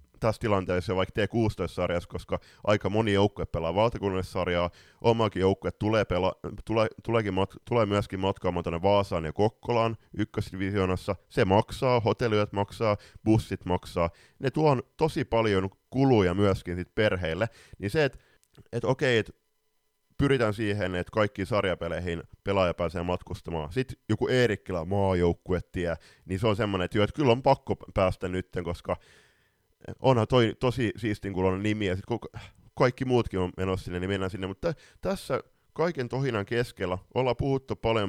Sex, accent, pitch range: male, native, 90-115 Hz